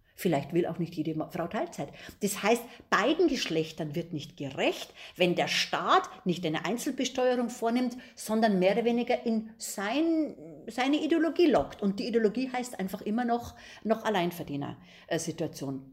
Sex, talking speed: female, 145 wpm